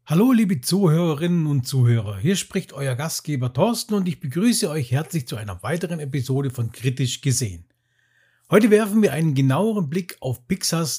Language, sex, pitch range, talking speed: German, male, 125-180 Hz, 165 wpm